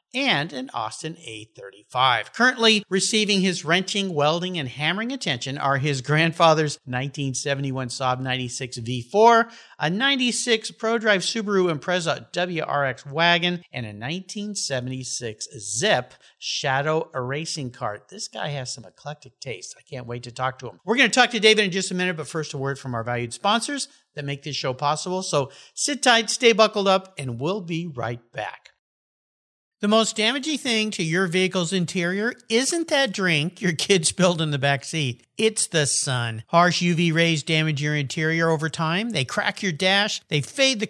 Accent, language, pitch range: American, English, 135-200 Hz